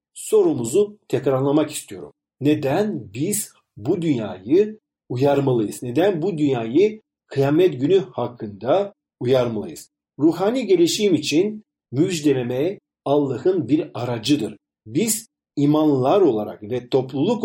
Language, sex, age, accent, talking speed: Turkish, male, 50-69, native, 95 wpm